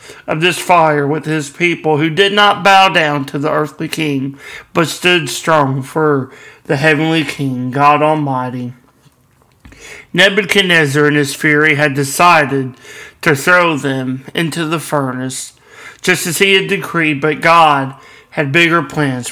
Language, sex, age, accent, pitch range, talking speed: English, male, 40-59, American, 145-175 Hz, 145 wpm